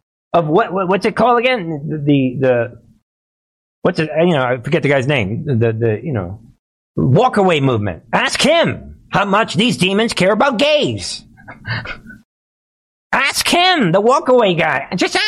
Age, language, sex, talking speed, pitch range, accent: 50-69, English, male, 155 wpm, 155-220 Hz, American